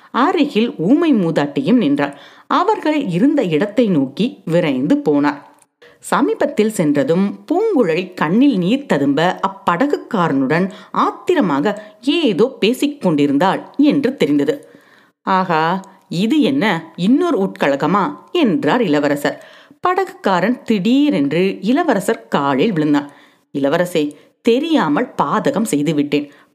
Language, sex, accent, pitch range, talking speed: Tamil, female, native, 160-270 Hz, 70 wpm